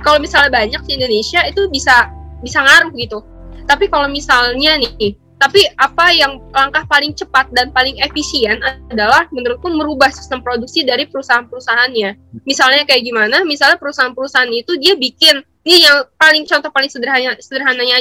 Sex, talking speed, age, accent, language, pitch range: female, 150 wpm, 10-29, native, Indonesian, 245-295 Hz